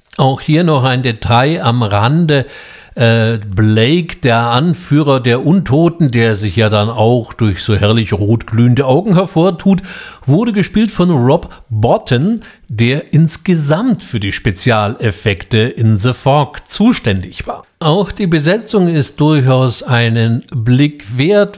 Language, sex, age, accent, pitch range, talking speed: German, male, 60-79, German, 120-175 Hz, 135 wpm